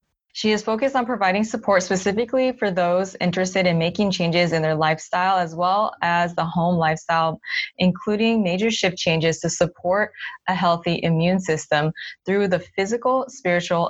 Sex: female